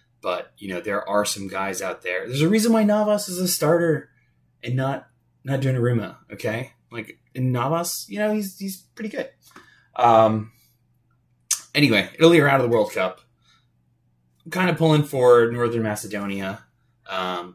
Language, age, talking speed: English, 20-39, 165 wpm